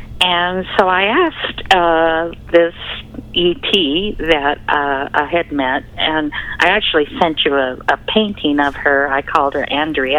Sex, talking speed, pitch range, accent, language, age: female, 155 wpm, 140-185 Hz, American, English, 50-69